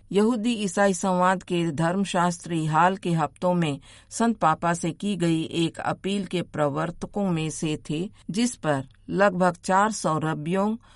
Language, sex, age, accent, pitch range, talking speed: Hindi, female, 50-69, native, 155-195 Hz, 140 wpm